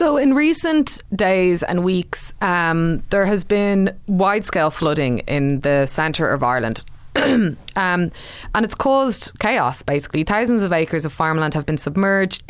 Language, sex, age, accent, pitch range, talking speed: English, female, 20-39, Irish, 145-190 Hz, 155 wpm